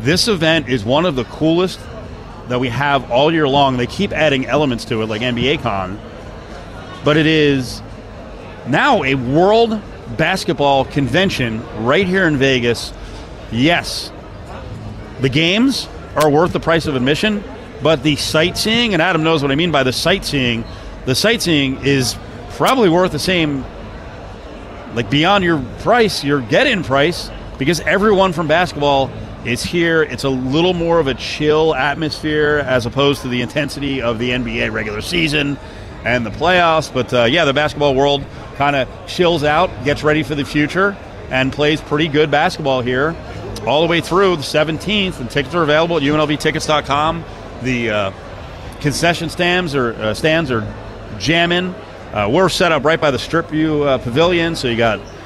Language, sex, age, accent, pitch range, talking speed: English, male, 40-59, American, 115-160 Hz, 165 wpm